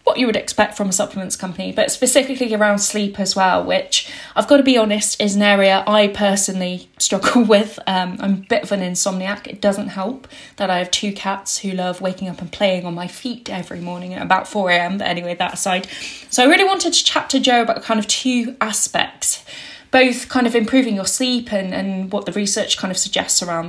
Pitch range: 190-240 Hz